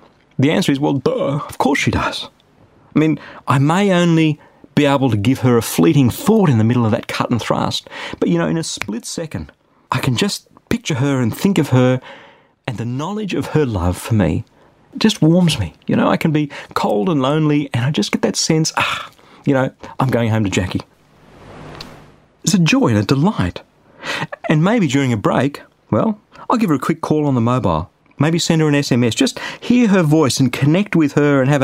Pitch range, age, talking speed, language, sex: 120-180 Hz, 40-59, 220 wpm, English, male